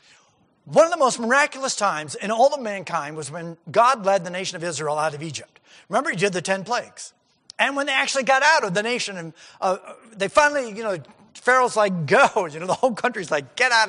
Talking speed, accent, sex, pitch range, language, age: 230 wpm, American, male, 185-245 Hz, English, 50-69